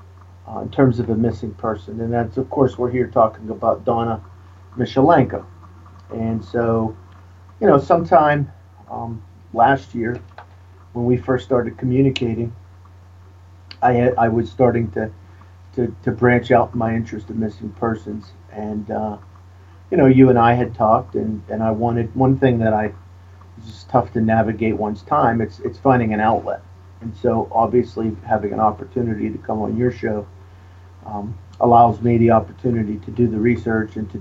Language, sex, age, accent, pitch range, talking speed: English, male, 50-69, American, 95-120 Hz, 170 wpm